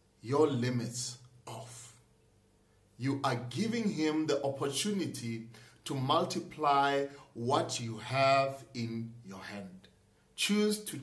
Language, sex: English, male